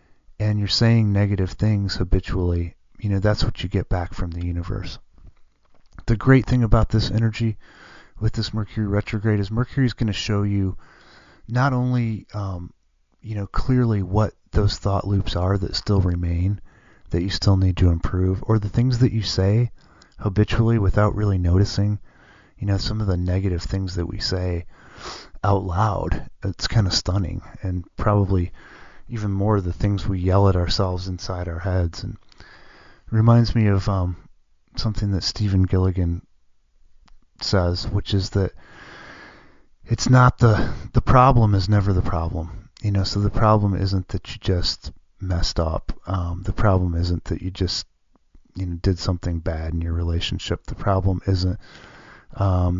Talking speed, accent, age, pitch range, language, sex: 165 wpm, American, 30-49, 90-105 Hz, English, male